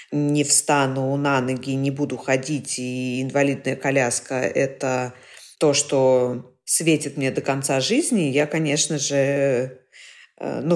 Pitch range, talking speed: 145-170 Hz, 125 wpm